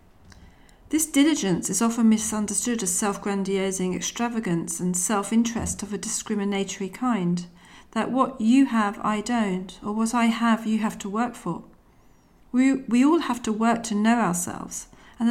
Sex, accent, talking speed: female, British, 155 wpm